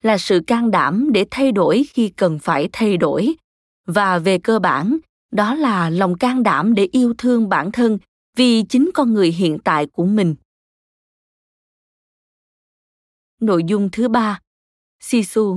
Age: 20-39